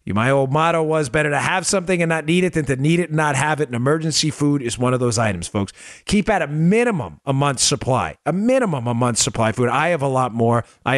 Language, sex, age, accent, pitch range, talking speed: English, male, 40-59, American, 110-145 Hz, 270 wpm